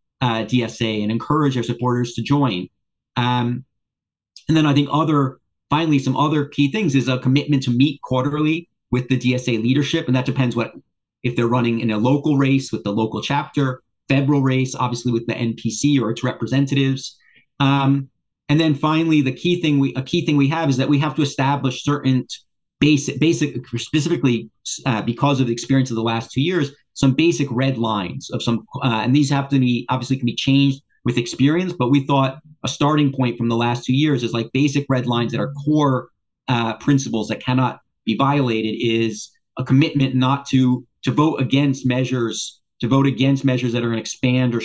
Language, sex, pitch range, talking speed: English, male, 120-140 Hz, 200 wpm